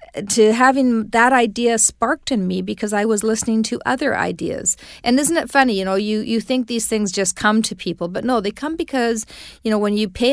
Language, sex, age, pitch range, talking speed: English, female, 40-59, 190-235 Hz, 225 wpm